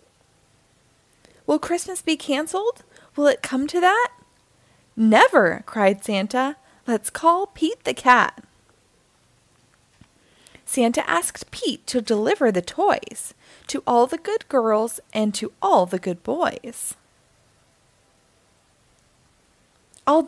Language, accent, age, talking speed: English, American, 20-39, 105 wpm